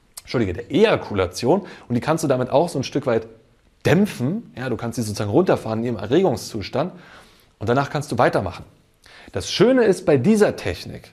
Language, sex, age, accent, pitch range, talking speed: German, male, 30-49, German, 110-140 Hz, 185 wpm